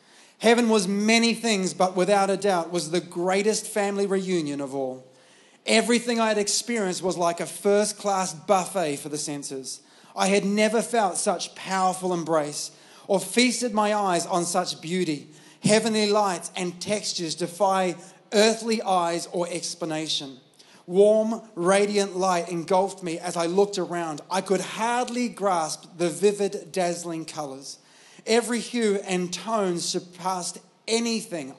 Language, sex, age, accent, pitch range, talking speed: English, male, 30-49, Australian, 165-205 Hz, 140 wpm